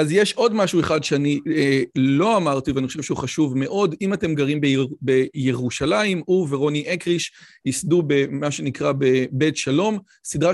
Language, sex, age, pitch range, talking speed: Hebrew, male, 40-59, 140-180 Hz, 160 wpm